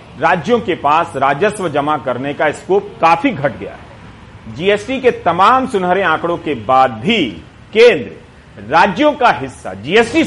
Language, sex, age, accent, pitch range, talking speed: Hindi, male, 40-59, native, 140-205 Hz, 145 wpm